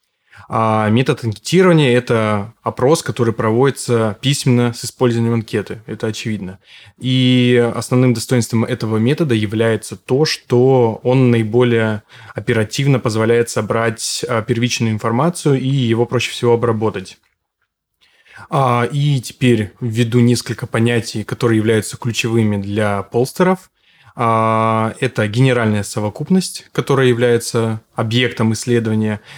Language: Russian